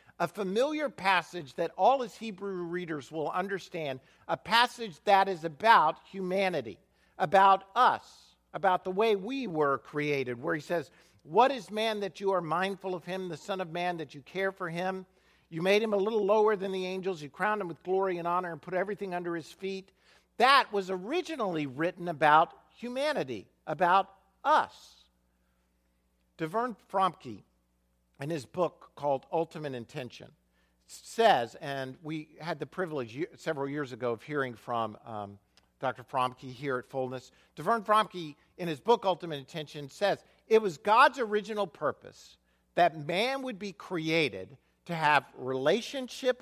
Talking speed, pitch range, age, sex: 160 wpm, 140-200 Hz, 50-69, male